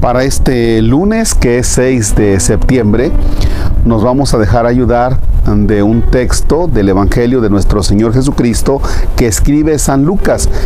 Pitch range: 95-130 Hz